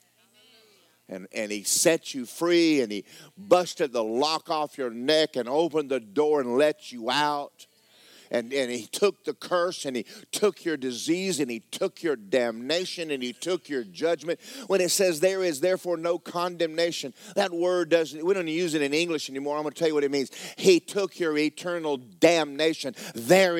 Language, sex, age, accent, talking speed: English, male, 50-69, American, 190 wpm